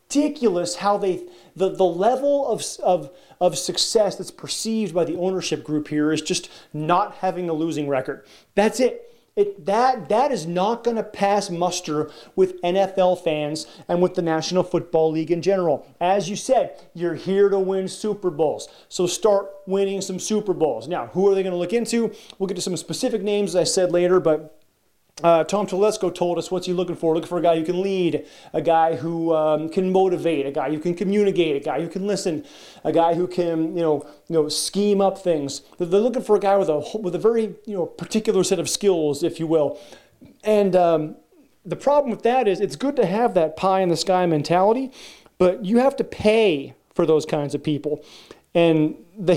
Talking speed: 210 wpm